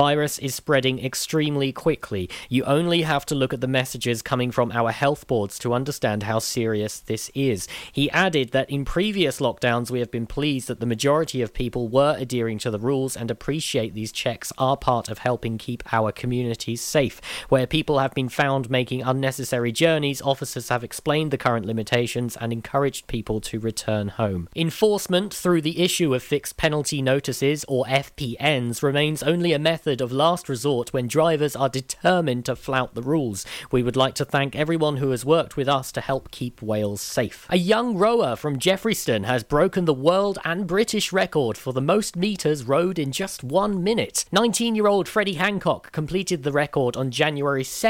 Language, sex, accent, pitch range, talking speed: English, male, British, 125-165 Hz, 185 wpm